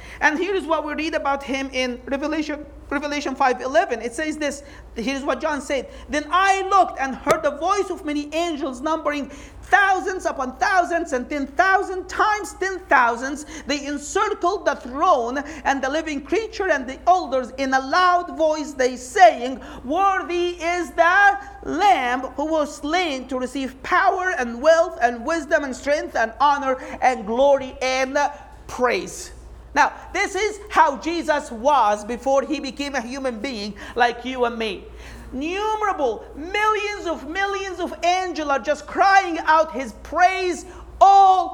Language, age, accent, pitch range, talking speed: English, 40-59, Israeli, 280-365 Hz, 155 wpm